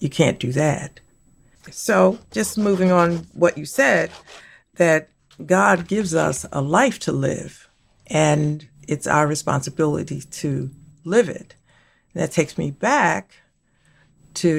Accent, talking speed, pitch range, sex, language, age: American, 130 wpm, 145-180 Hz, female, English, 50-69